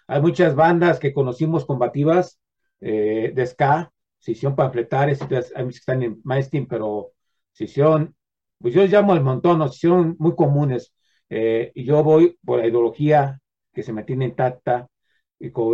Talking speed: 170 wpm